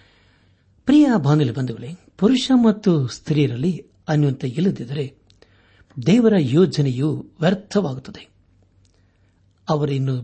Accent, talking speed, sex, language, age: native, 70 wpm, male, Kannada, 60-79